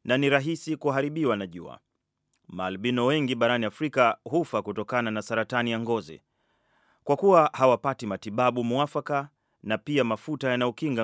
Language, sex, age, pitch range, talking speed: Swahili, male, 30-49, 110-135 Hz, 145 wpm